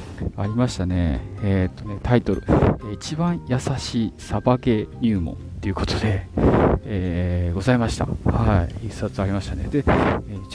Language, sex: Japanese, male